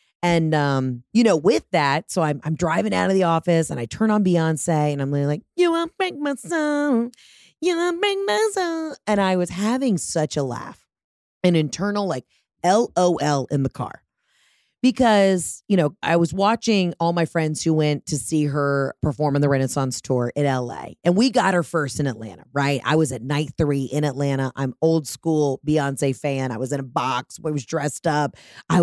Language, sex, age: English, female, 30-49